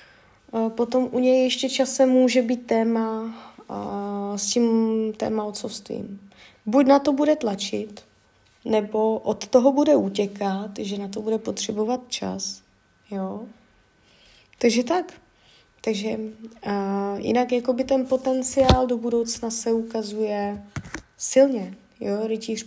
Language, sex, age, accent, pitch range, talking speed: Czech, female, 20-39, native, 205-255 Hz, 115 wpm